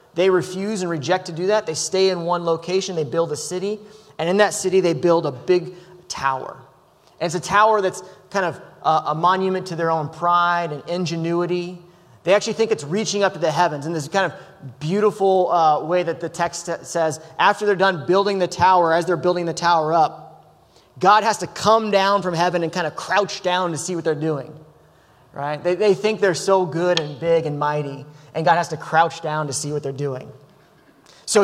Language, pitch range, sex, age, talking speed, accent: English, 155-185 Hz, male, 30-49, 215 wpm, American